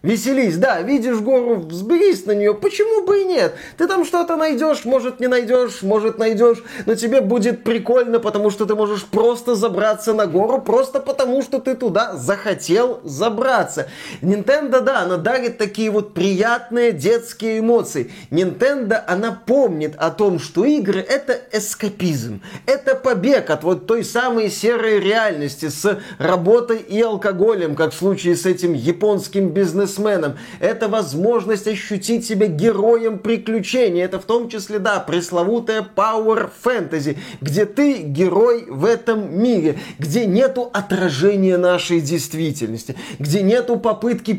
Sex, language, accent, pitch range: male, Russian, native, 185-230 Hz